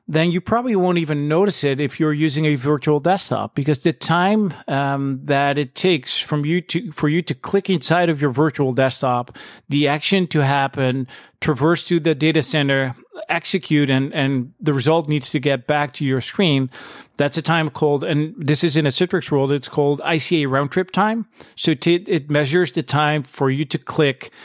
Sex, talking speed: male, 195 wpm